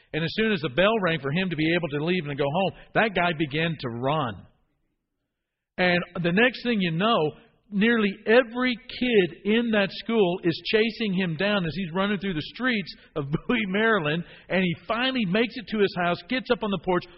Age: 50-69